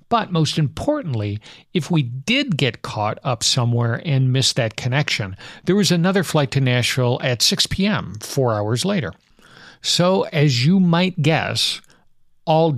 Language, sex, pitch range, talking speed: English, male, 120-160 Hz, 150 wpm